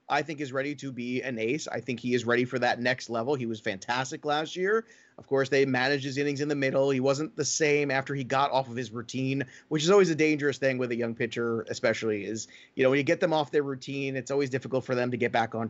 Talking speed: 275 wpm